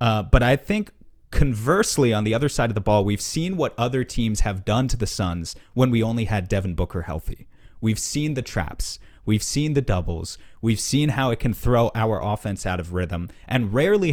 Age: 30-49